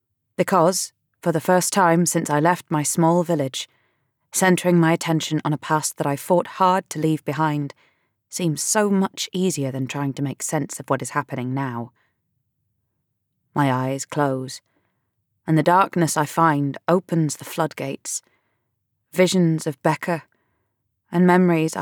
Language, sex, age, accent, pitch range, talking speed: English, female, 20-39, British, 115-165 Hz, 150 wpm